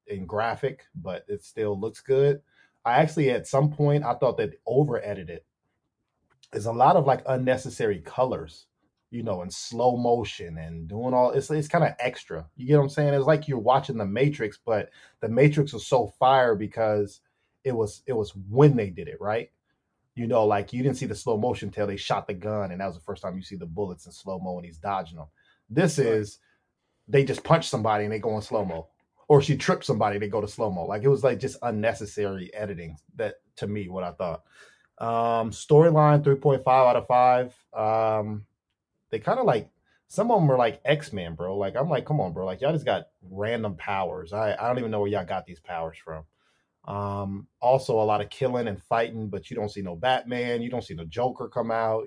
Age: 20-39